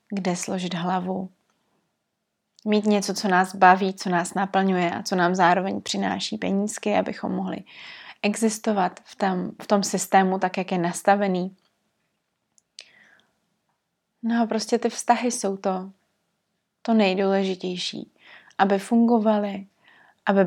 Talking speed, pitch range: 115 wpm, 185-210 Hz